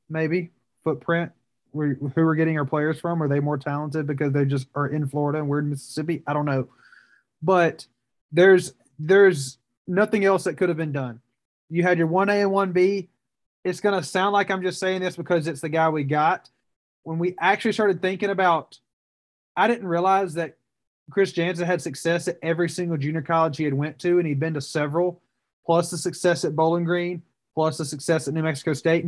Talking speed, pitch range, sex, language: 205 wpm, 150-175 Hz, male, English